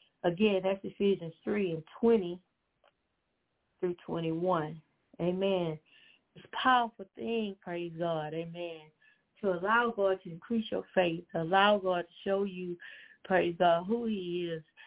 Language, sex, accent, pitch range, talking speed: English, female, American, 170-230 Hz, 135 wpm